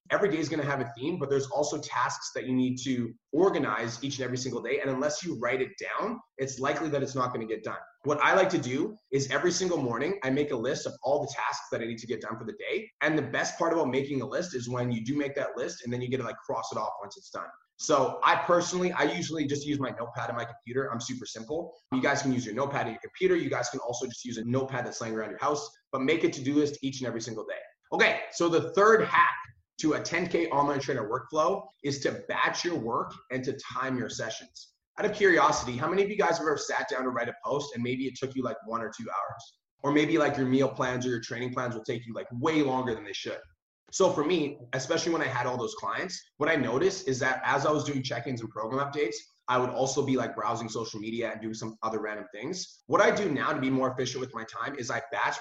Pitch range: 120-145 Hz